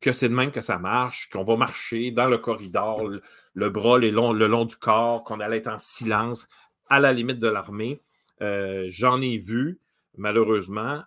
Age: 40-59